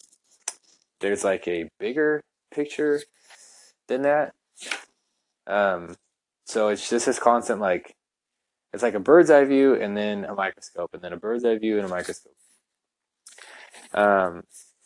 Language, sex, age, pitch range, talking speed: English, male, 20-39, 100-120 Hz, 135 wpm